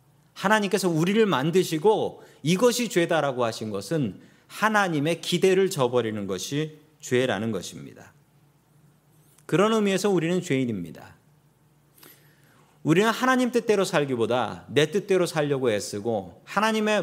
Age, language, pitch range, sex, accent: 40-59, Korean, 145-185 Hz, male, native